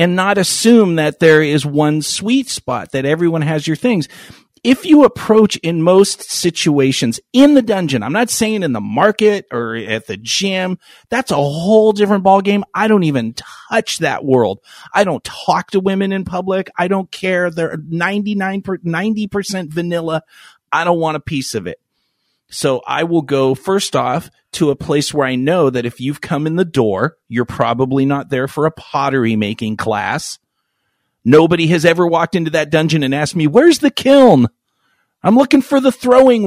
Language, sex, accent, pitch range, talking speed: English, male, American, 145-210 Hz, 185 wpm